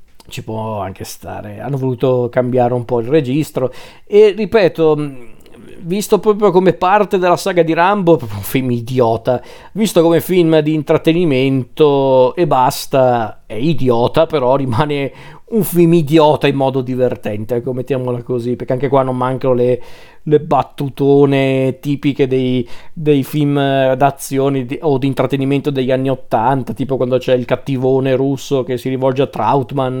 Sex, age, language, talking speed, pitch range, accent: male, 40-59, Italian, 150 wpm, 125-155 Hz, native